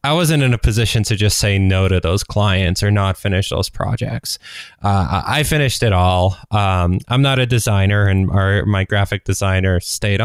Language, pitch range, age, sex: English, 95-120 Hz, 20-39, male